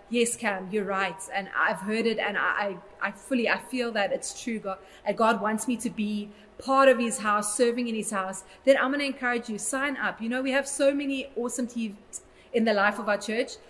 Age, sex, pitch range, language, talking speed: 30-49, female, 205-245 Hz, English, 235 wpm